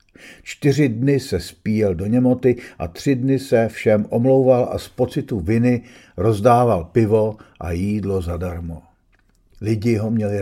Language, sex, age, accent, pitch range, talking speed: Czech, male, 50-69, native, 95-120 Hz, 140 wpm